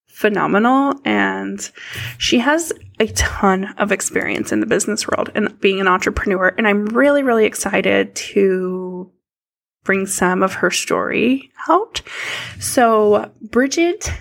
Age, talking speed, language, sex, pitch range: 10-29, 125 wpm, English, female, 195-265 Hz